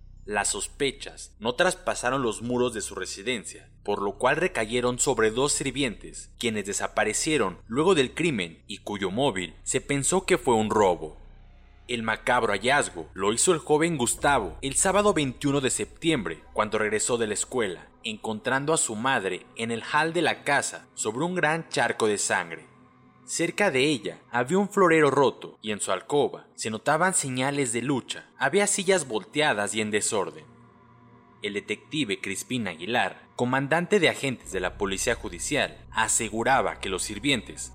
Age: 30-49